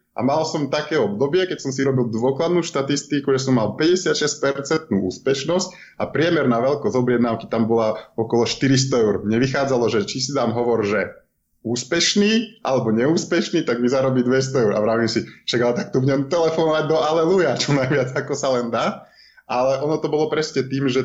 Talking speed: 180 wpm